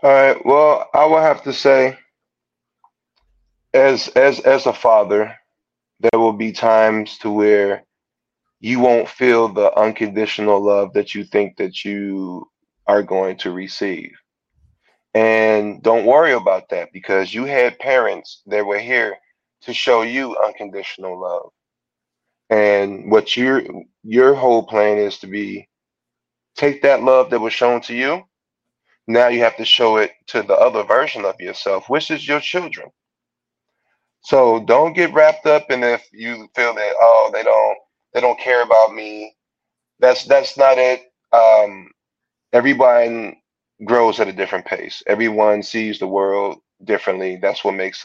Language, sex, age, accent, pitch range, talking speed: English, male, 20-39, American, 100-125 Hz, 150 wpm